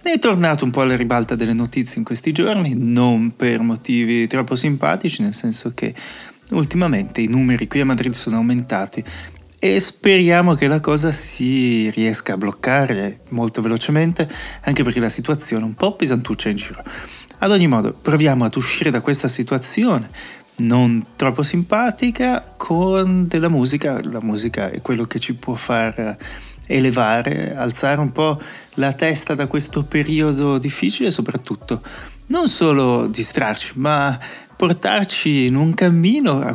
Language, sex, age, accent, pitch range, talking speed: Italian, male, 20-39, native, 120-160 Hz, 150 wpm